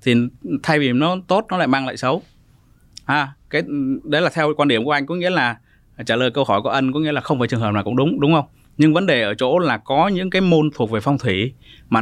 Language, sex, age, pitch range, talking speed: Vietnamese, male, 20-39, 125-170 Hz, 275 wpm